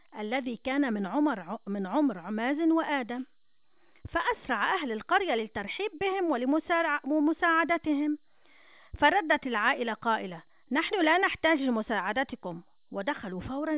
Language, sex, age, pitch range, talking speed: French, female, 40-59, 215-315 Hz, 95 wpm